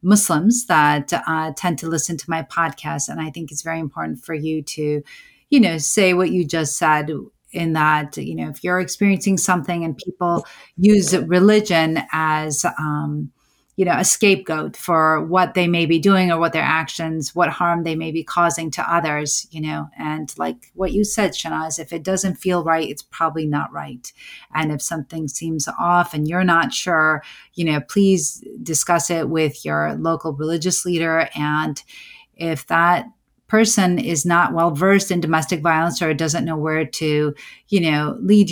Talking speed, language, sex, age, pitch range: 180 wpm, English, female, 30-49, 155-180 Hz